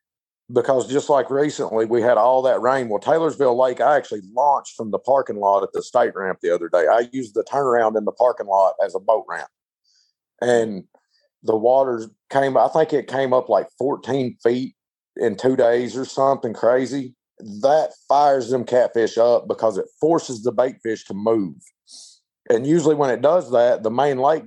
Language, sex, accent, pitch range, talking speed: English, male, American, 120-140 Hz, 190 wpm